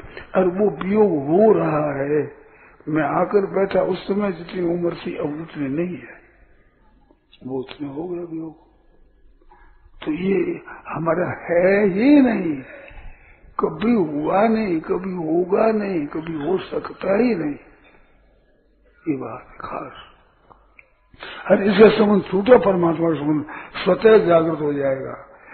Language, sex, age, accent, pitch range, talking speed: Hindi, male, 50-69, native, 155-195 Hz, 125 wpm